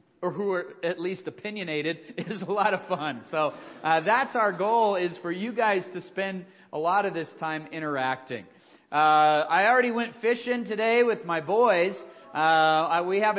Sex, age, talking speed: male, 40-59, 185 wpm